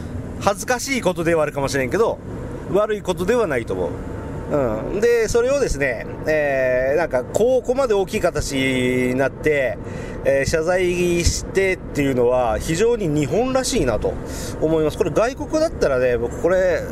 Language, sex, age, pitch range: Japanese, male, 40-59, 135-200 Hz